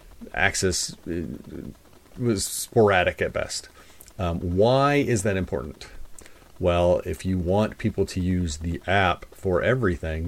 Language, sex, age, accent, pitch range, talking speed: English, male, 40-59, American, 90-110 Hz, 125 wpm